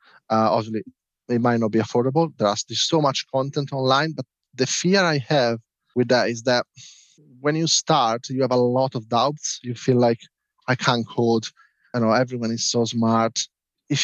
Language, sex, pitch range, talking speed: English, male, 115-145 Hz, 190 wpm